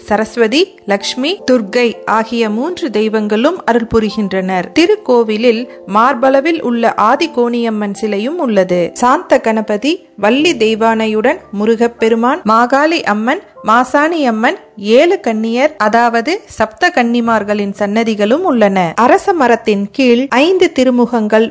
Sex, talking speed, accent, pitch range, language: female, 85 wpm, native, 220-275 Hz, Tamil